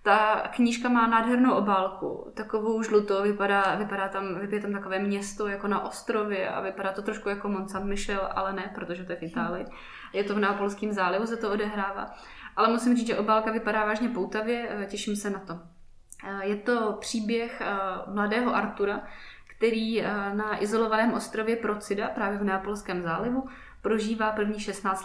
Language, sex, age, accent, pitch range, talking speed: Czech, female, 20-39, native, 195-220 Hz, 165 wpm